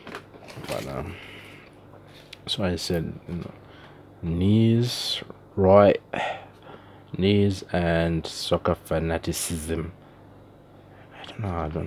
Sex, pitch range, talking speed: male, 80-100 Hz, 100 wpm